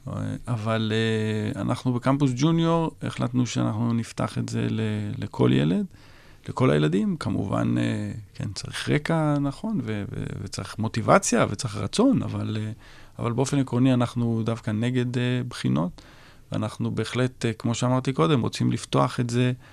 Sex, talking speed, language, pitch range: male, 145 wpm, Hebrew, 105-125 Hz